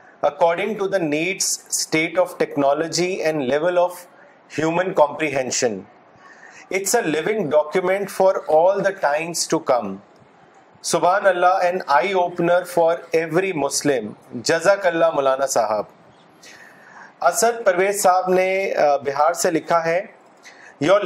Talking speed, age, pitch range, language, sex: 115 wpm, 40-59, 155-190 Hz, Urdu, male